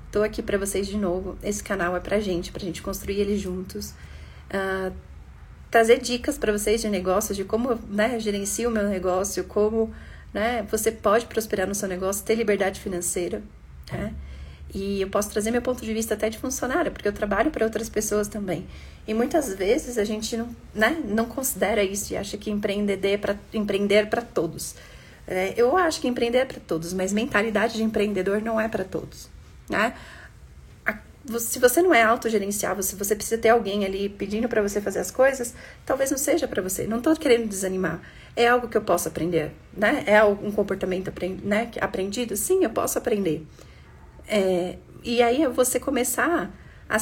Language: Portuguese